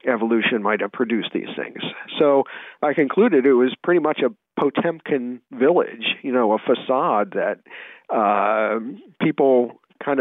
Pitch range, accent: 120-155 Hz, American